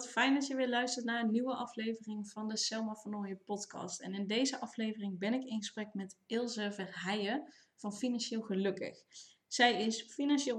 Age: 20-39